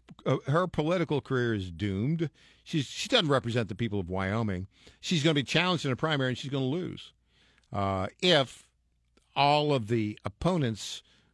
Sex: male